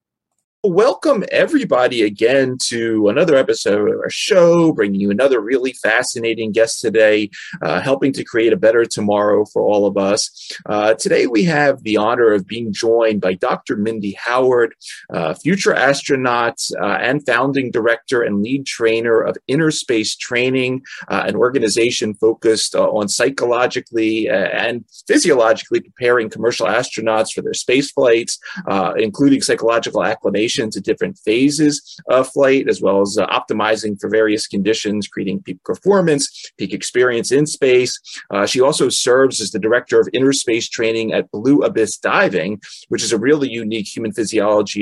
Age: 30-49